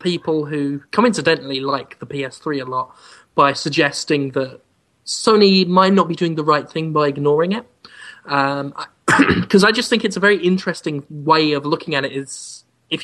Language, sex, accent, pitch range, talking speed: English, male, British, 140-170 Hz, 180 wpm